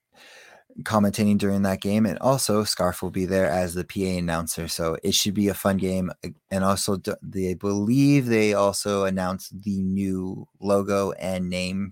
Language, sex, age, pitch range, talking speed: English, male, 30-49, 95-105 Hz, 165 wpm